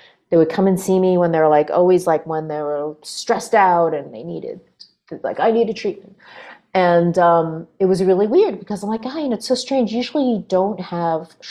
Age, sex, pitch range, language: 30-49, female, 160-210 Hz, English